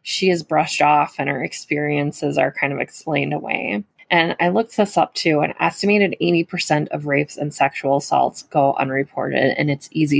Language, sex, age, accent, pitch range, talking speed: English, female, 20-39, American, 150-200 Hz, 180 wpm